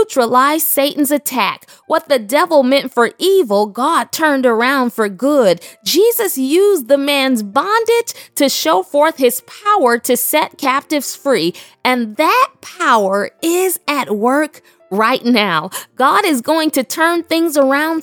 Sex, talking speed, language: female, 145 wpm, English